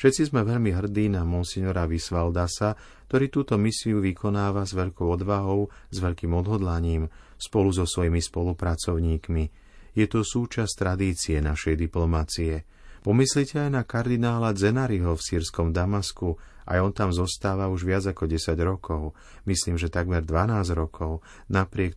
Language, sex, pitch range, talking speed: Slovak, male, 85-105 Hz, 135 wpm